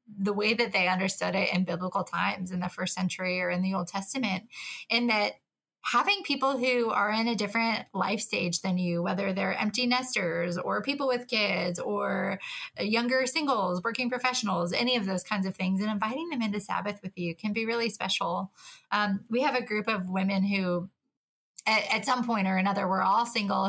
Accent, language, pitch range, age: American, English, 190-245 Hz, 20-39